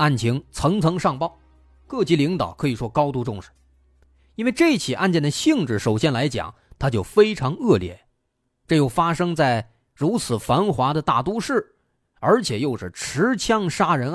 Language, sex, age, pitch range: Chinese, male, 30-49, 120-170 Hz